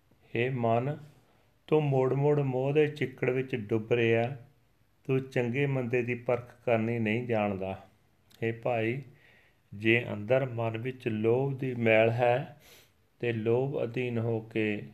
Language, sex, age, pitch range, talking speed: Punjabi, male, 40-59, 105-125 Hz, 135 wpm